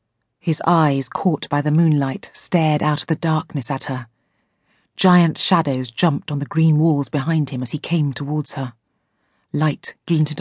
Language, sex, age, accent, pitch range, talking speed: English, female, 40-59, British, 135-170 Hz, 165 wpm